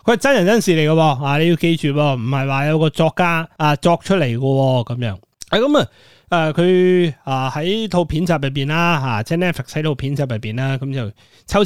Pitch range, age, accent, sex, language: 120-170 Hz, 30-49, native, male, Chinese